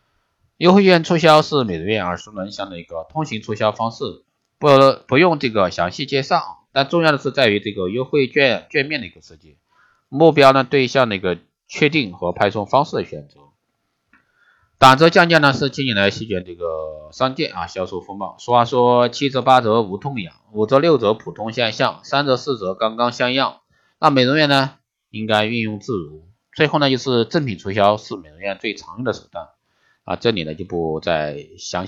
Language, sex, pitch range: Chinese, male, 90-135 Hz